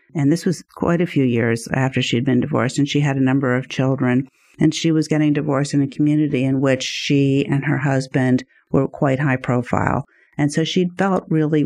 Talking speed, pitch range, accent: 210 wpm, 125-150 Hz, American